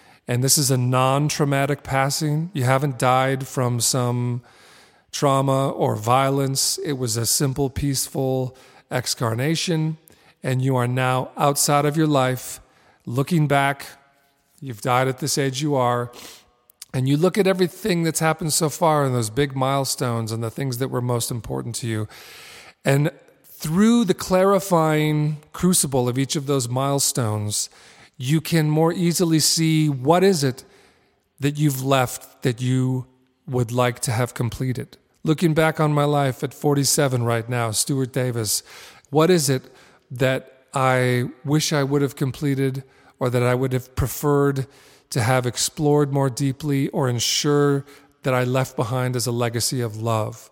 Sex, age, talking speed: male, 40-59, 155 wpm